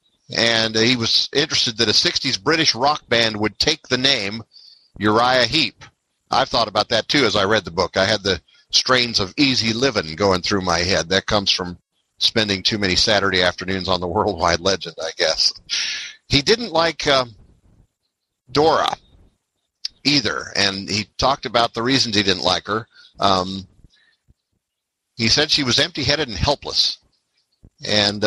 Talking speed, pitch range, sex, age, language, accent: 165 wpm, 95-120 Hz, male, 50-69, English, American